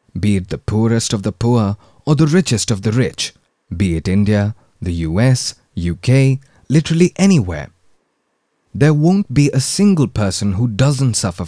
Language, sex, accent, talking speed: Hindi, male, native, 155 wpm